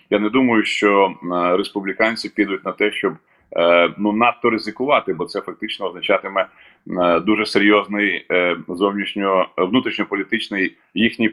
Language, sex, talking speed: Ukrainian, male, 105 wpm